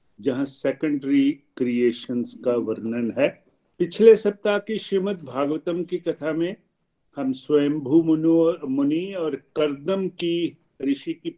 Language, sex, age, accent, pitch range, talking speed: Hindi, male, 50-69, native, 130-165 Hz, 115 wpm